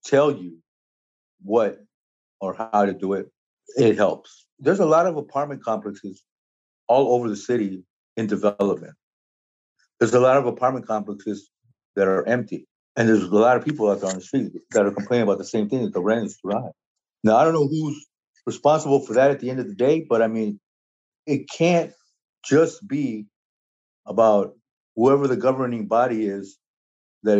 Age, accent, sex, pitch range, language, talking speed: 50-69, American, male, 105-145 Hz, English, 180 wpm